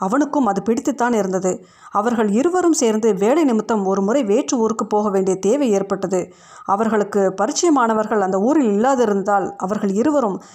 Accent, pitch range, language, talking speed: native, 195-245 Hz, Tamil, 130 wpm